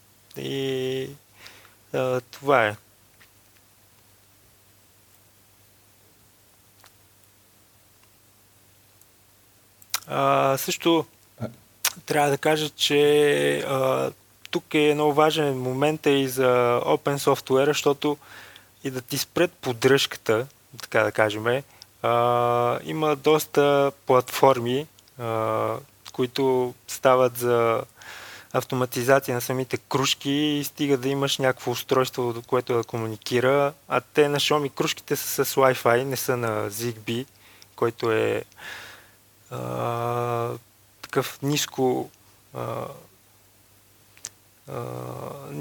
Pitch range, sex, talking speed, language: 105-135 Hz, male, 85 wpm, Bulgarian